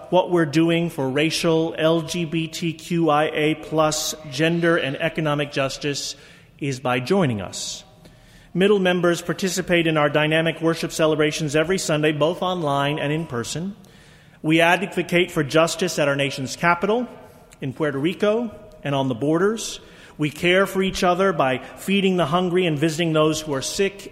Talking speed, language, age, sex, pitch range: 145 wpm, English, 40-59, male, 135-170 Hz